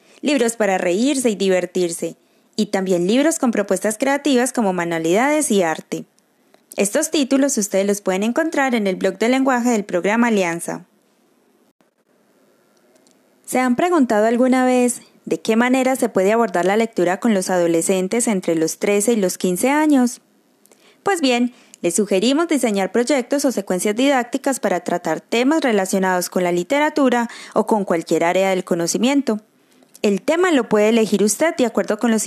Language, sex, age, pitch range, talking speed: Spanish, female, 20-39, 190-260 Hz, 155 wpm